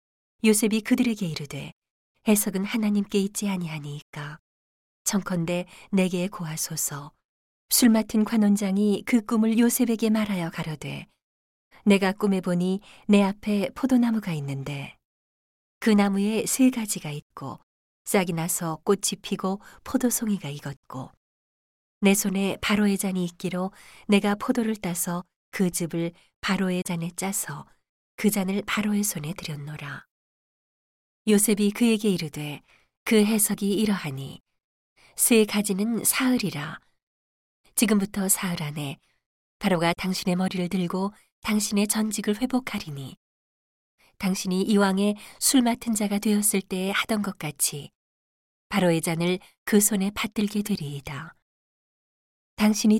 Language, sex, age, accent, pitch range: Korean, female, 40-59, native, 175-215 Hz